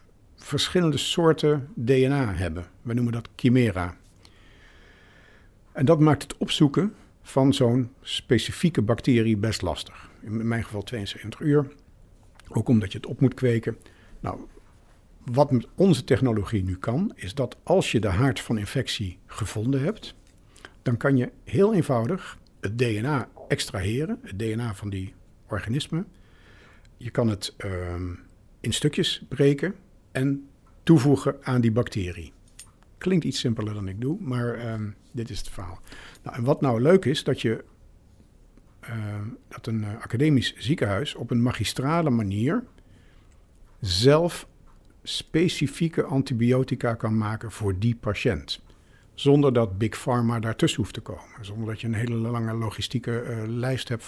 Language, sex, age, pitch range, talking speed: Dutch, male, 60-79, 105-135 Hz, 140 wpm